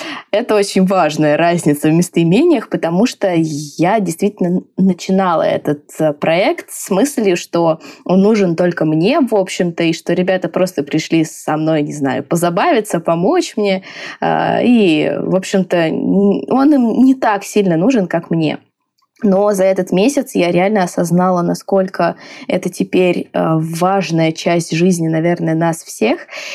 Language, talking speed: Russian, 140 wpm